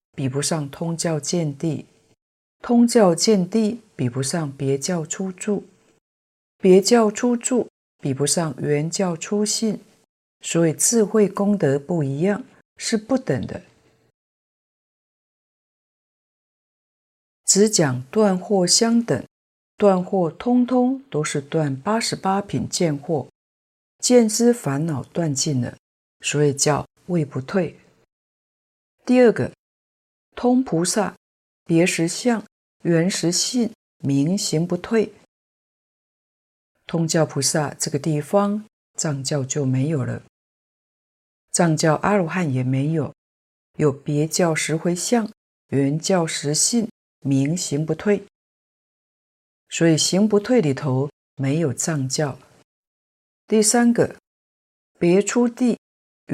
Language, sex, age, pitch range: Chinese, female, 50-69, 145-210 Hz